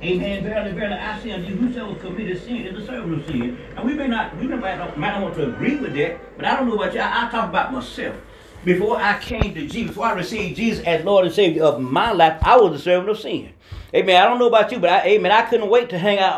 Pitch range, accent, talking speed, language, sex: 175-220 Hz, American, 275 wpm, English, male